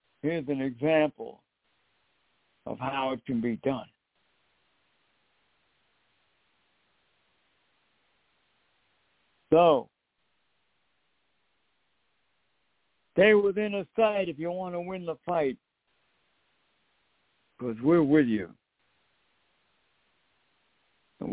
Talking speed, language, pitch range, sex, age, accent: 75 wpm, English, 120-155 Hz, male, 60-79, American